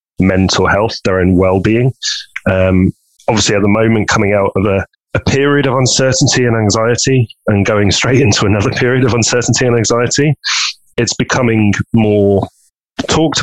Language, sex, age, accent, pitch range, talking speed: English, male, 30-49, British, 95-110 Hz, 150 wpm